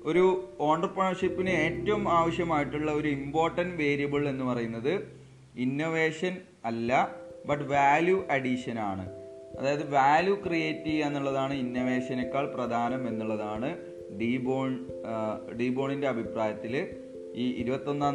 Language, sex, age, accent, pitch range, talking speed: Malayalam, male, 30-49, native, 125-160 Hz, 85 wpm